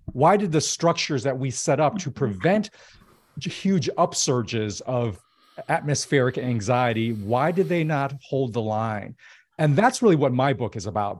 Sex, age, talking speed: male, 40-59, 160 wpm